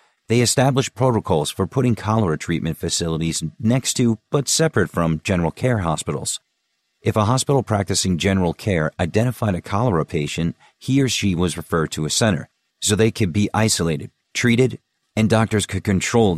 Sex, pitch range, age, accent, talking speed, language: male, 85-115 Hz, 40-59, American, 160 wpm, English